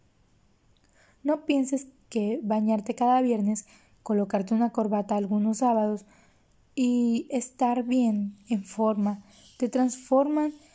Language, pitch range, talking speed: Spanish, 215-260 Hz, 100 wpm